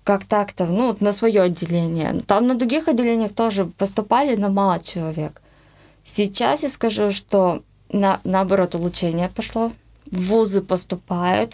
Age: 20-39